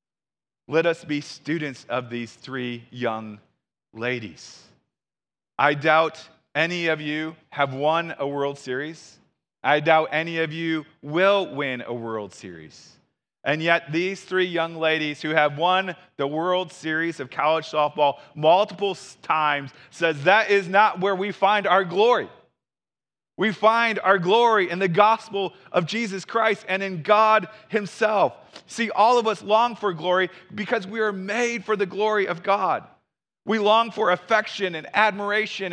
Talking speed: 155 wpm